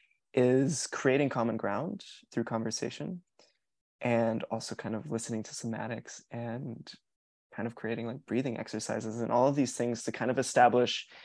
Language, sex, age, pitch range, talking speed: English, male, 20-39, 115-130 Hz, 155 wpm